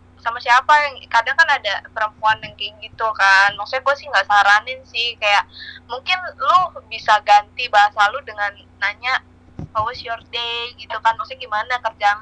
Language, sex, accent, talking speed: Indonesian, female, native, 165 wpm